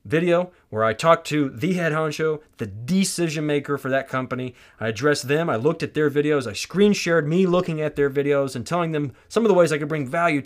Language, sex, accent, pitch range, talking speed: English, male, American, 130-180 Hz, 235 wpm